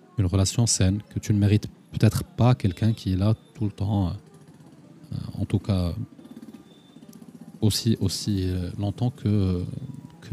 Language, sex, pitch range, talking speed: Arabic, male, 95-125 Hz, 145 wpm